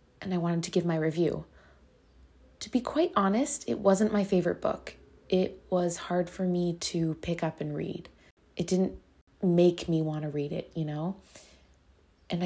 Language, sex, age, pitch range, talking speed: English, female, 20-39, 160-205 Hz, 180 wpm